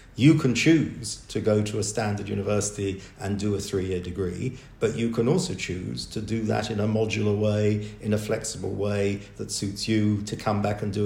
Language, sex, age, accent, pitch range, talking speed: English, male, 50-69, British, 100-115 Hz, 210 wpm